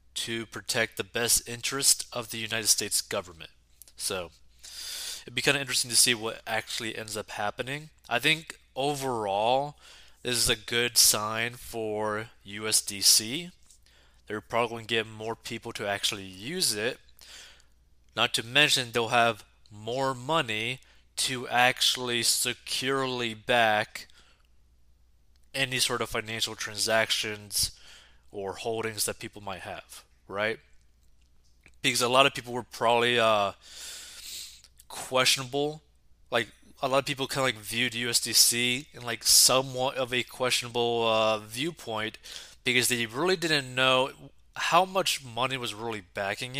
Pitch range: 105-130 Hz